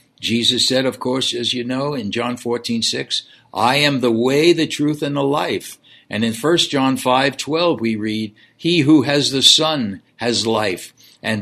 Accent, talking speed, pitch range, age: American, 180 wpm, 110-140 Hz, 60-79